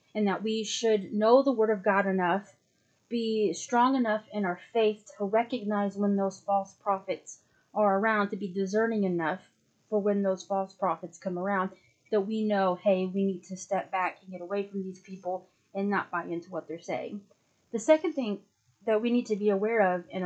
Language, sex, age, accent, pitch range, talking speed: English, female, 30-49, American, 185-220 Hz, 200 wpm